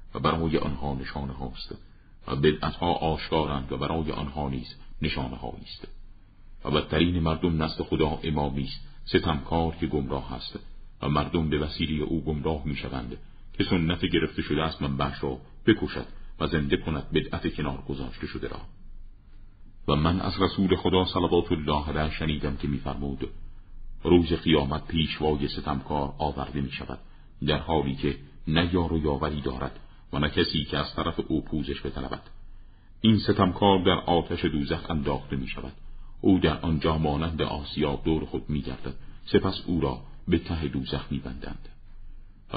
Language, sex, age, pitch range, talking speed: Persian, male, 50-69, 70-85 Hz, 150 wpm